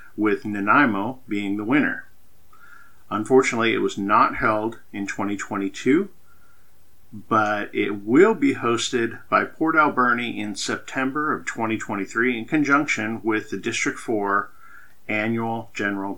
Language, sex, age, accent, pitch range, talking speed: English, male, 50-69, American, 105-125 Hz, 120 wpm